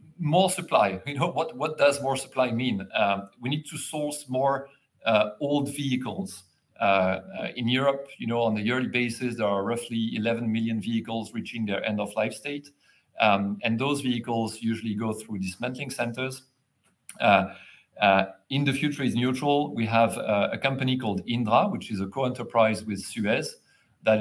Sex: male